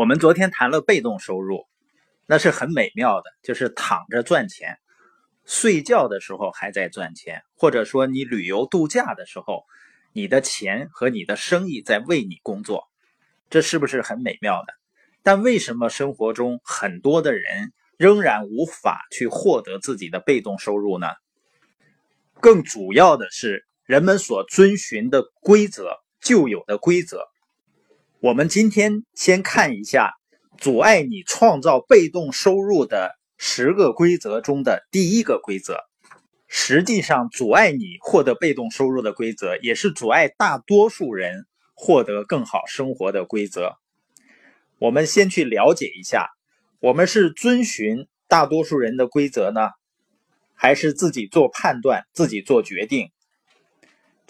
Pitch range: 125-210 Hz